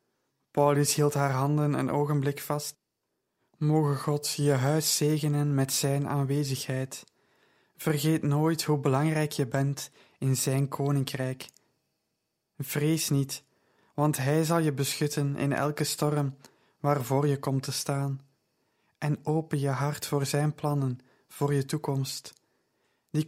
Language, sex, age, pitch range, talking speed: Dutch, male, 20-39, 135-150 Hz, 130 wpm